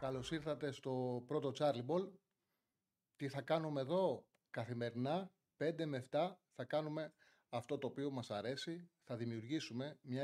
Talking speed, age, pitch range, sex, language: 140 wpm, 30-49, 115-140 Hz, male, Greek